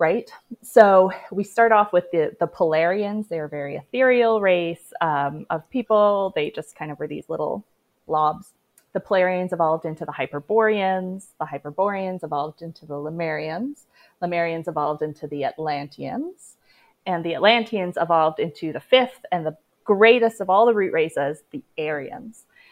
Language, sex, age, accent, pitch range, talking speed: English, female, 30-49, American, 160-215 Hz, 155 wpm